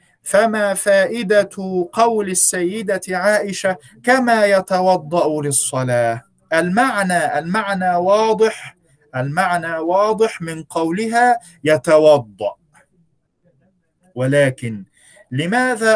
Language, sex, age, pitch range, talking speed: Arabic, male, 50-69, 145-195 Hz, 70 wpm